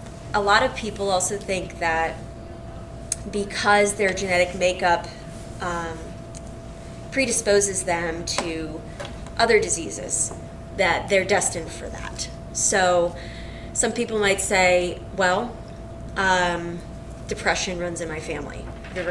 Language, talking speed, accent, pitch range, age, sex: English, 110 wpm, American, 175-210 Hz, 20-39, female